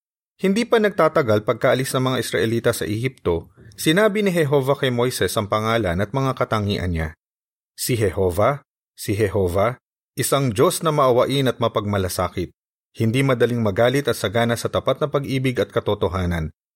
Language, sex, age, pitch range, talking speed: Filipino, male, 40-59, 100-150 Hz, 145 wpm